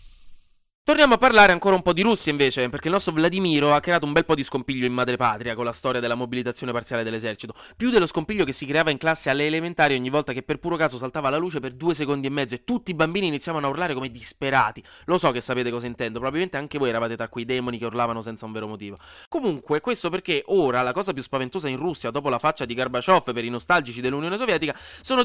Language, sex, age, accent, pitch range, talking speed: Italian, male, 20-39, native, 125-175 Hz, 240 wpm